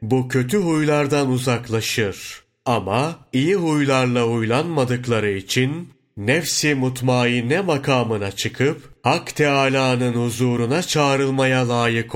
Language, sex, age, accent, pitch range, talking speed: Turkish, male, 40-59, native, 115-150 Hz, 90 wpm